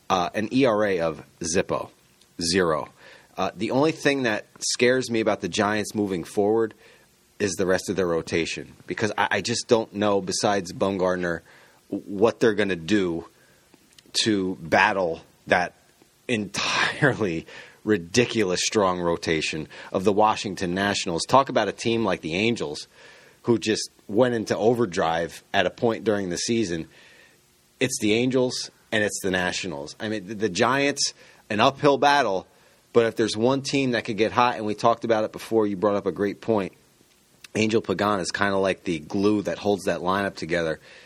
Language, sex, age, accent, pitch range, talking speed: English, male, 30-49, American, 95-115 Hz, 170 wpm